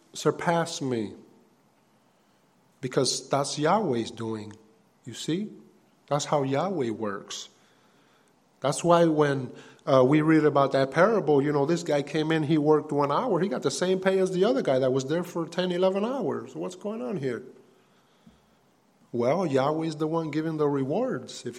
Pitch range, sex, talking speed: 145-190 Hz, male, 165 wpm